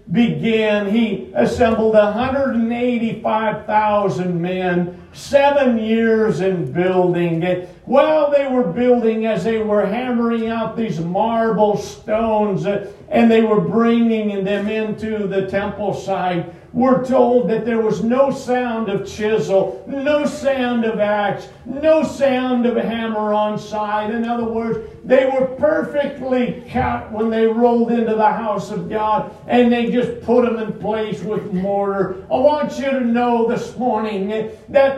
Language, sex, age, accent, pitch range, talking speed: English, male, 50-69, American, 215-275 Hz, 140 wpm